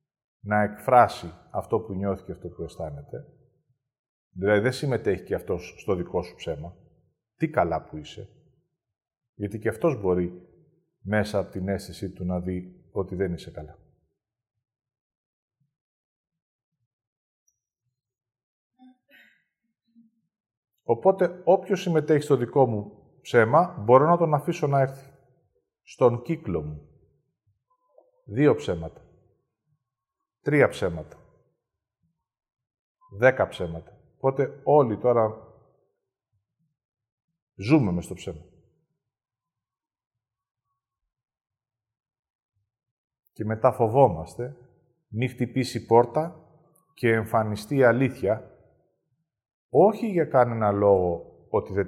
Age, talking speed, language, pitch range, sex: 40-59, 95 wpm, Greek, 105-145 Hz, male